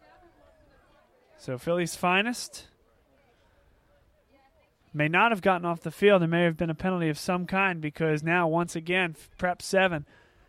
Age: 30-49